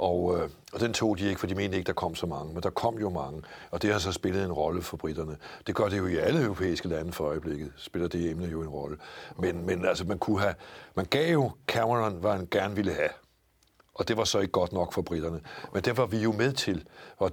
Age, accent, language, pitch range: 60-79, native, Danish, 85-105 Hz